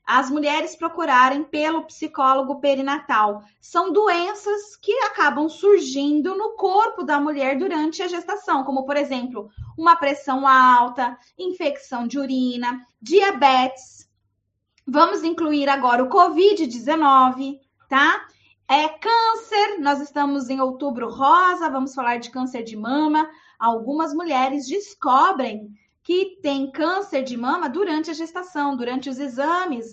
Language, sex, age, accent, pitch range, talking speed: Portuguese, female, 20-39, Brazilian, 245-325 Hz, 120 wpm